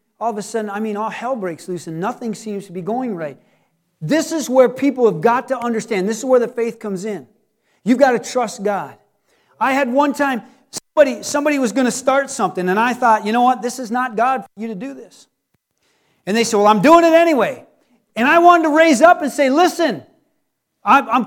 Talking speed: 230 wpm